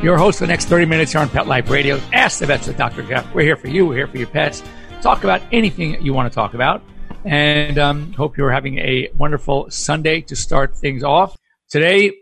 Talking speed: 235 wpm